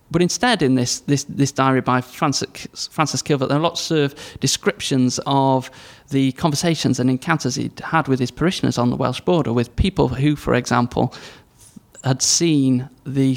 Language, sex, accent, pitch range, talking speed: English, male, British, 125-150 Hz, 165 wpm